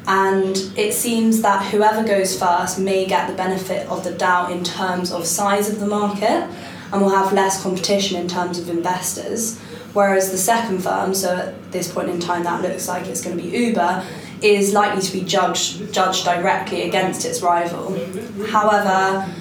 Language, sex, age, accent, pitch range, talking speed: English, female, 10-29, British, 175-195 Hz, 180 wpm